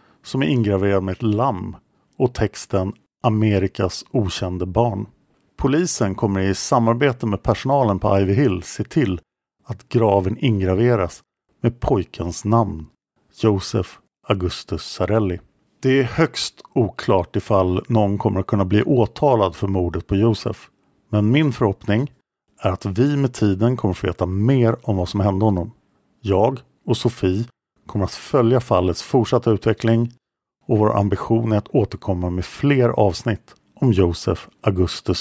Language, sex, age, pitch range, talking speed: English, male, 50-69, 95-120 Hz, 145 wpm